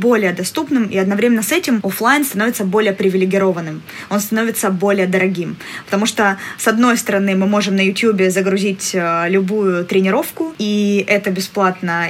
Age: 20-39